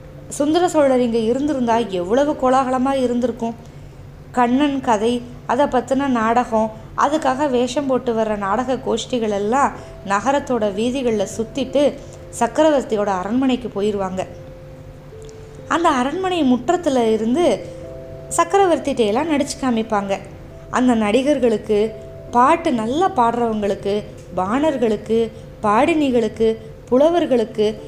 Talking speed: 85 wpm